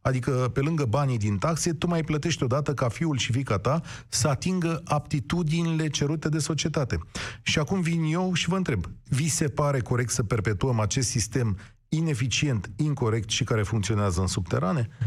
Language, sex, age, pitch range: Romanian, male, 40-59, 115-175 Hz